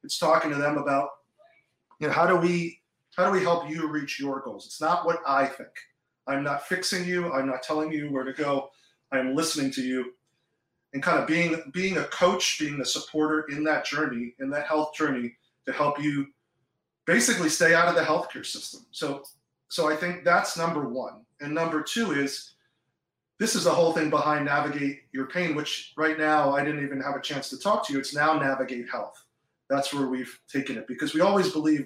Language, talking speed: English, 210 wpm